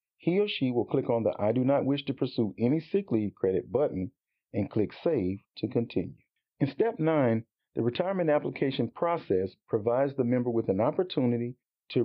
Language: English